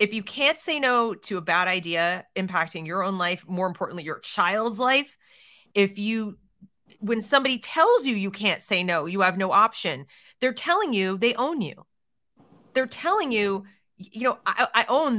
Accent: American